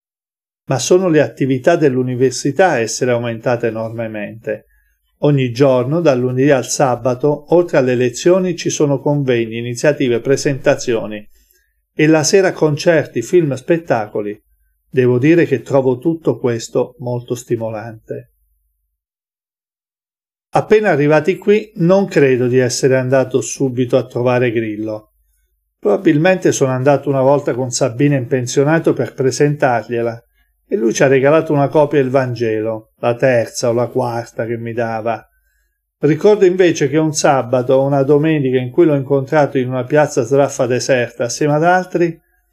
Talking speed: 135 wpm